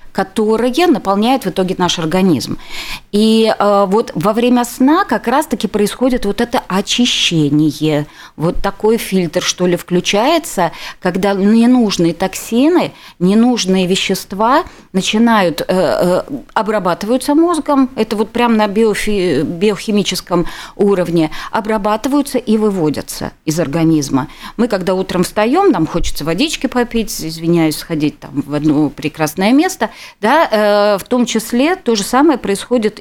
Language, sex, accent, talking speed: Russian, female, native, 115 wpm